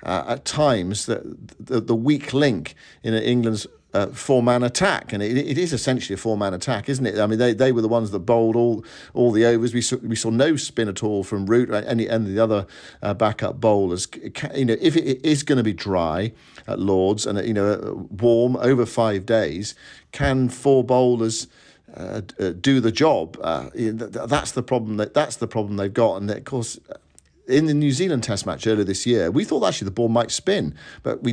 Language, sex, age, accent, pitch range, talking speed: English, male, 50-69, British, 105-125 Hz, 215 wpm